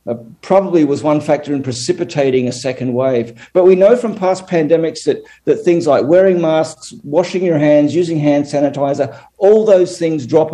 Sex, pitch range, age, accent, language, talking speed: male, 135-170 Hz, 50-69, Australian, English, 180 wpm